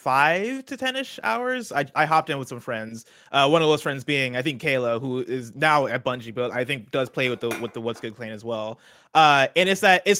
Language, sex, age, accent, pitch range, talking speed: English, male, 20-39, American, 120-145 Hz, 265 wpm